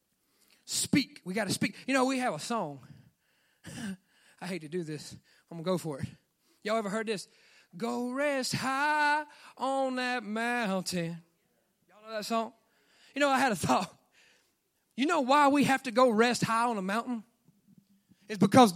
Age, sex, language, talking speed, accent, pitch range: 30-49, male, English, 180 wpm, American, 195-285 Hz